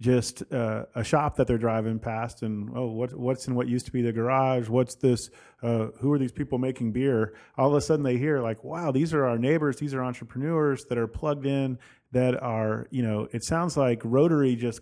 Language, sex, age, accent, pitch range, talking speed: English, male, 30-49, American, 115-140 Hz, 225 wpm